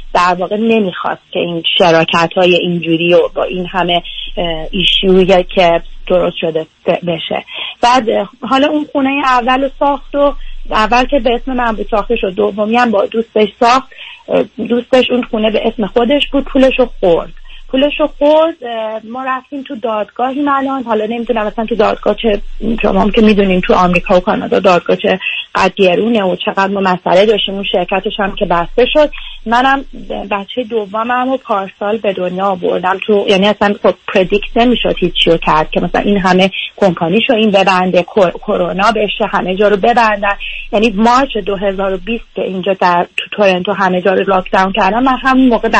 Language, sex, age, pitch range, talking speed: Persian, female, 30-49, 185-235 Hz, 155 wpm